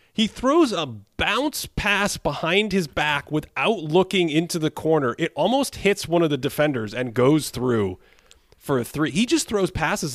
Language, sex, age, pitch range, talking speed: English, male, 30-49, 110-150 Hz, 175 wpm